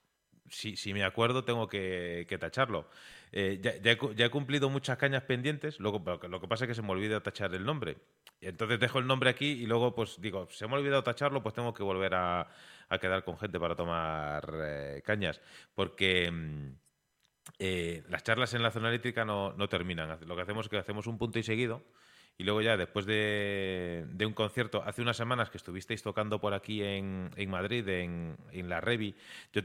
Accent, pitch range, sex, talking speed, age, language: Spanish, 95-120 Hz, male, 205 wpm, 30-49, Spanish